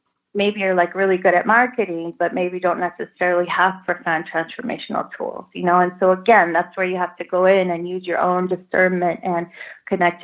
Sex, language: female, English